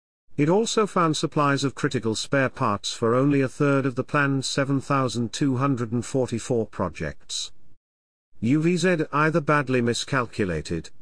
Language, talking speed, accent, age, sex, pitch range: English, 115 wpm, British, 50-69, male, 105-140 Hz